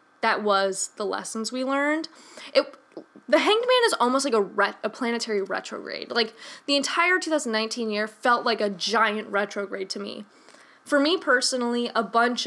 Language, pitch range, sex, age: English, 210-275 Hz, female, 10-29